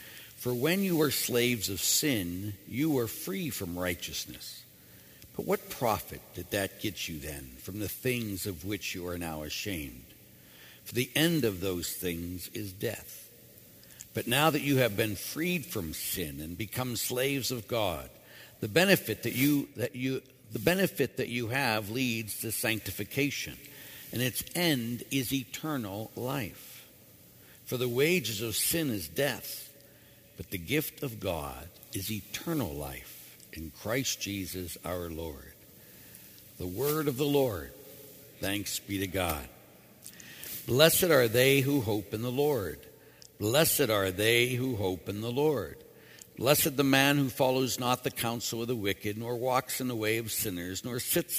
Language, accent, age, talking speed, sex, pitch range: English, American, 60-79, 160 wpm, male, 95-135 Hz